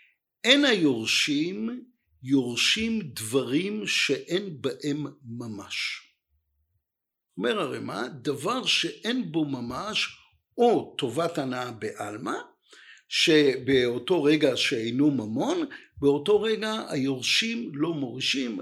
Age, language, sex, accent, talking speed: 50-69, Hebrew, male, native, 85 wpm